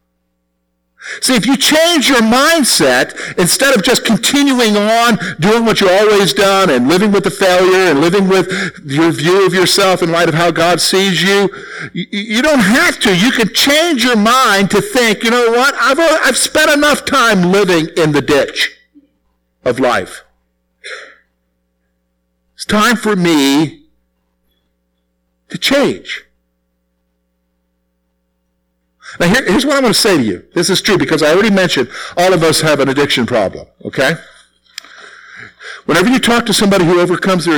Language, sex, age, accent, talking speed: English, male, 50-69, American, 155 wpm